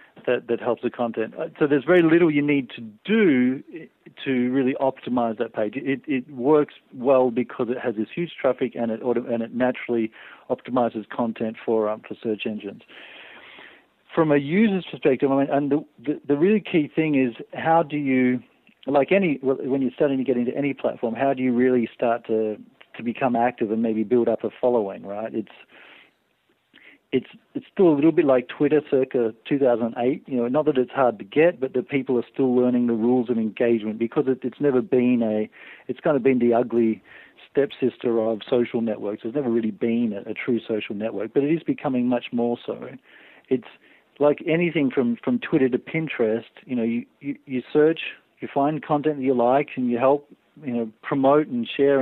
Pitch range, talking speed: 115-145 Hz, 200 wpm